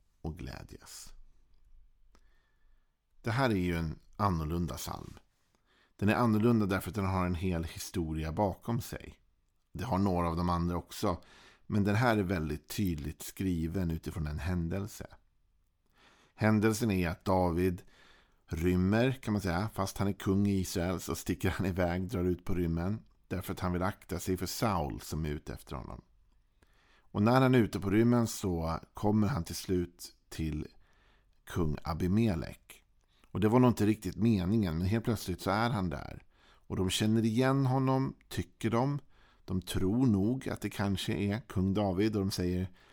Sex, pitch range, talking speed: male, 85-110 Hz, 170 wpm